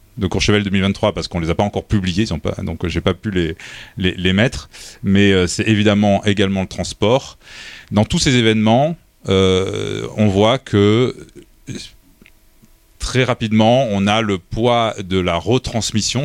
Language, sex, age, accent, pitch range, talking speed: French, male, 30-49, French, 90-110 Hz, 160 wpm